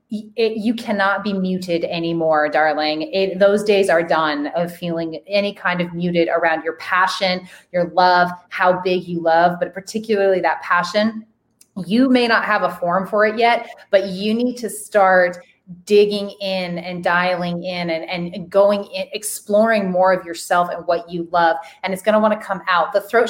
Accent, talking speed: American, 185 wpm